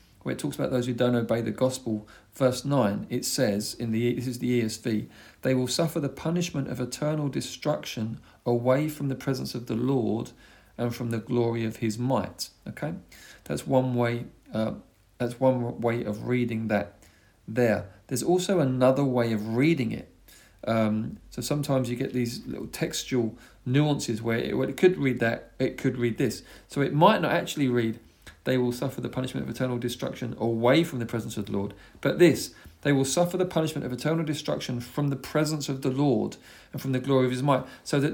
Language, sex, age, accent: English, male, 40-59, British